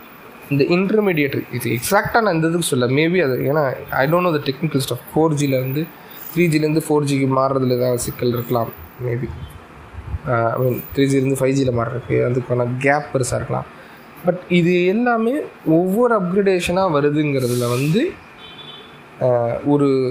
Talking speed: 140 wpm